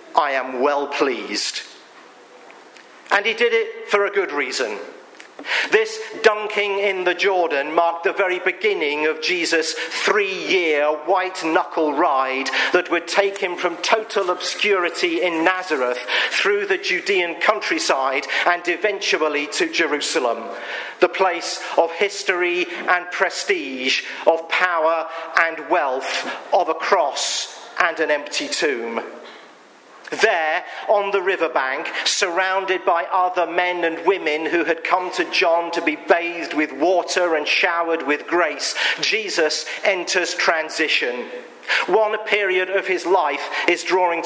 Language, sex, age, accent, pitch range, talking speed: English, male, 50-69, British, 165-215 Hz, 125 wpm